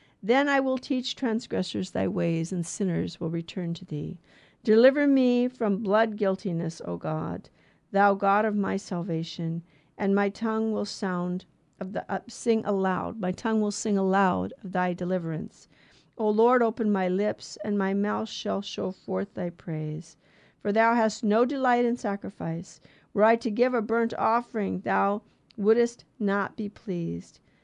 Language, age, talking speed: English, 50-69, 160 wpm